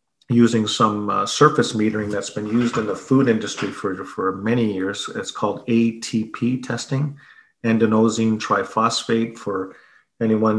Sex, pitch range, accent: male, 105-120 Hz, American